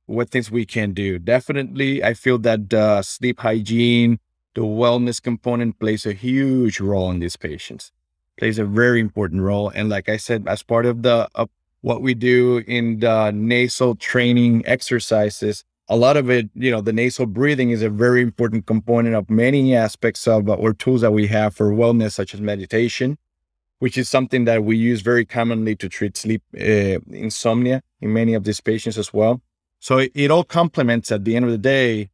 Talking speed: 190 wpm